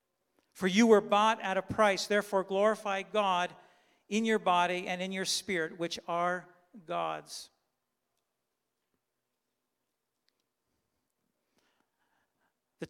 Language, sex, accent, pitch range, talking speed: English, male, American, 185-220 Hz, 100 wpm